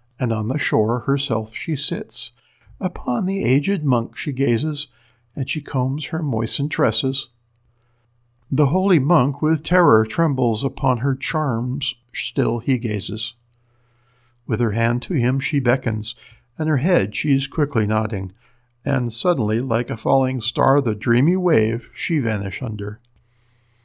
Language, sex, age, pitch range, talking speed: English, male, 50-69, 120-145 Hz, 145 wpm